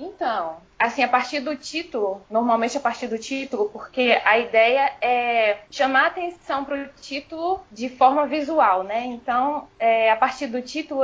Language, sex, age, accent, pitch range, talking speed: Portuguese, female, 10-29, Brazilian, 235-290 Hz, 170 wpm